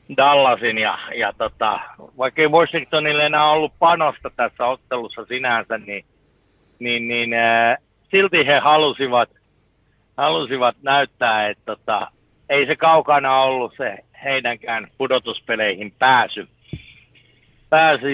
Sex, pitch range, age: male, 130-165 Hz, 60-79